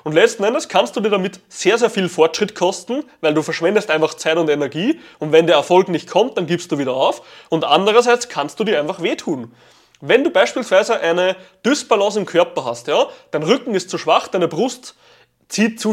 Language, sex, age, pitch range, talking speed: German, male, 20-39, 165-240 Hz, 205 wpm